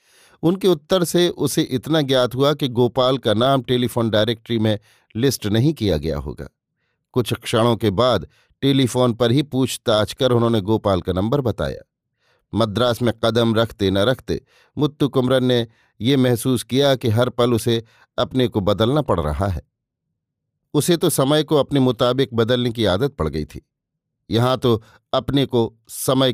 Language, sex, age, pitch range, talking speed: Hindi, male, 50-69, 110-135 Hz, 165 wpm